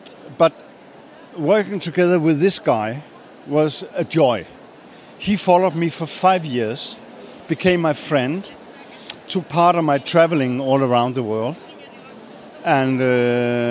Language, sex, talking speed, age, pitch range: German, male, 120 wpm, 60-79, 135-175 Hz